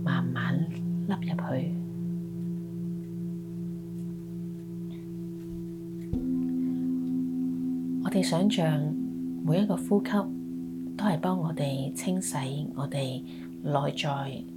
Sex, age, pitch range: female, 30-49, 115-170 Hz